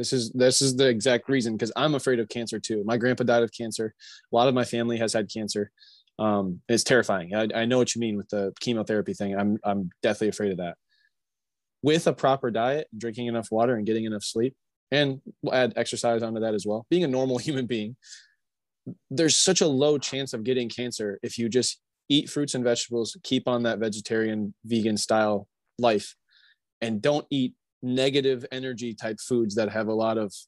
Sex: male